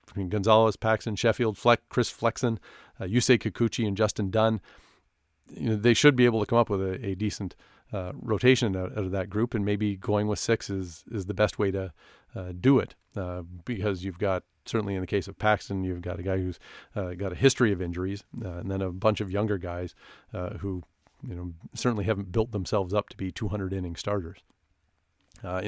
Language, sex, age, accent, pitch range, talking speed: English, male, 40-59, American, 95-115 Hz, 210 wpm